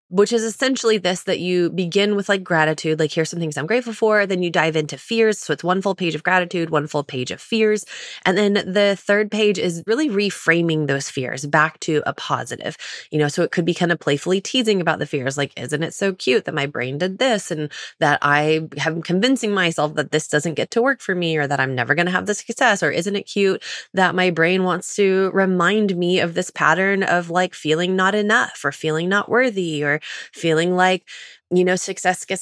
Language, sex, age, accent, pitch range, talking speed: English, female, 20-39, American, 150-195 Hz, 230 wpm